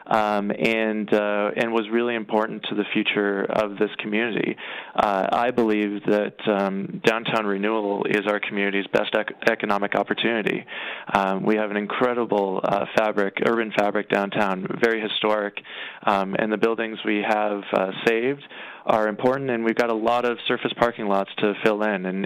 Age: 20-39